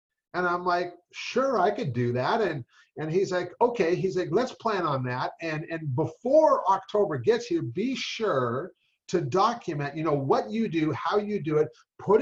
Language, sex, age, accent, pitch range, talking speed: English, male, 50-69, American, 165-250 Hz, 190 wpm